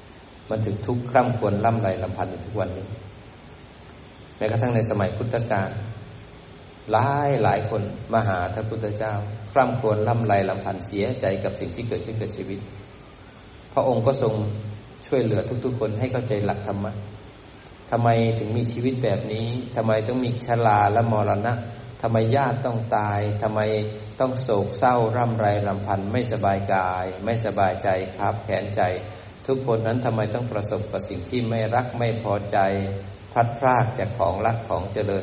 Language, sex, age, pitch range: Thai, male, 20-39, 100-115 Hz